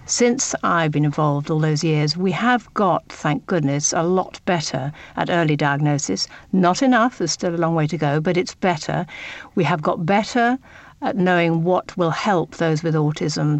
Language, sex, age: English, female, 60-79